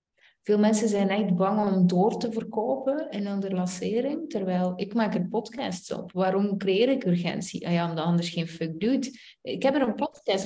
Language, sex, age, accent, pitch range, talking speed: Dutch, female, 30-49, Dutch, 190-225 Hz, 185 wpm